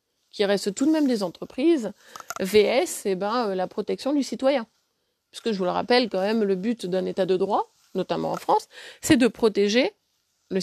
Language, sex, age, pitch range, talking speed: French, female, 30-49, 200-270 Hz, 205 wpm